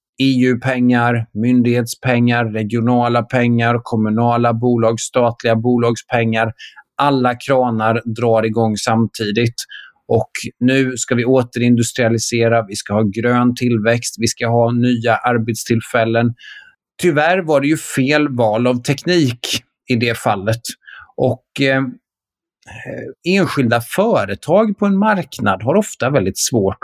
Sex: male